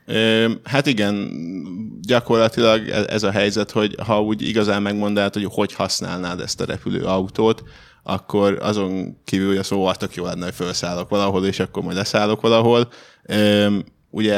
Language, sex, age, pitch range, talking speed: Hungarian, male, 10-29, 95-105 Hz, 130 wpm